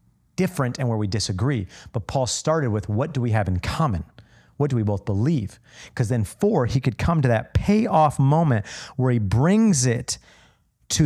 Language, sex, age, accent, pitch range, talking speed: English, male, 40-59, American, 105-140 Hz, 190 wpm